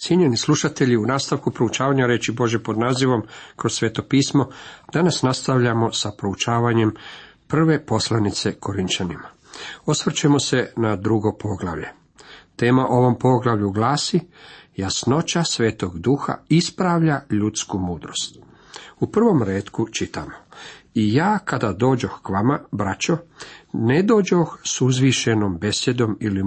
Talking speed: 115 wpm